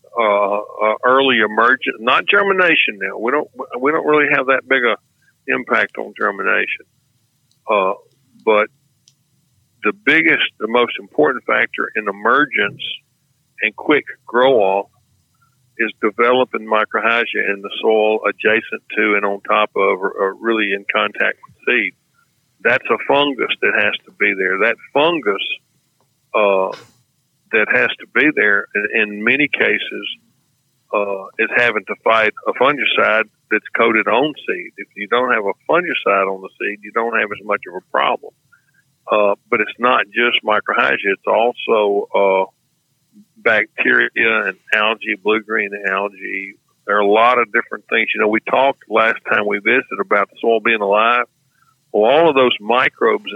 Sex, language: male, English